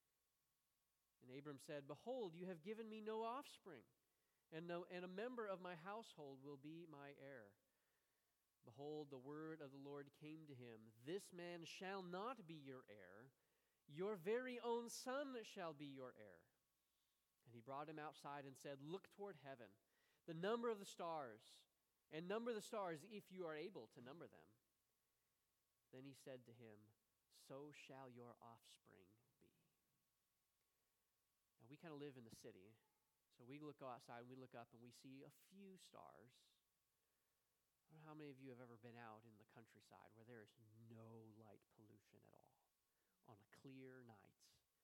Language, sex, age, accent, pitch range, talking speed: English, male, 30-49, American, 125-190 Hz, 170 wpm